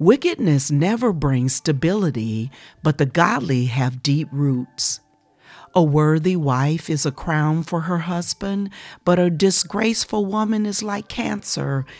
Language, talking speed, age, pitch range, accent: English, 130 wpm, 50-69, 135-190 Hz, American